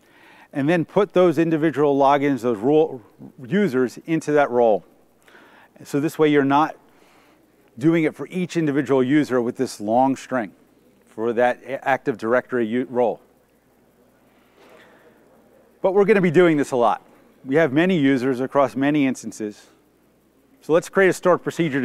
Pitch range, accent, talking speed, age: 135-165 Hz, American, 145 wpm, 40-59